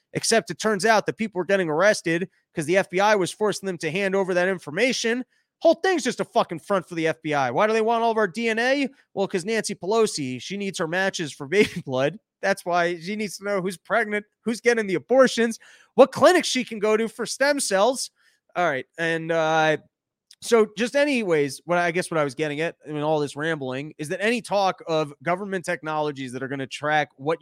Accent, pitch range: American, 155-220 Hz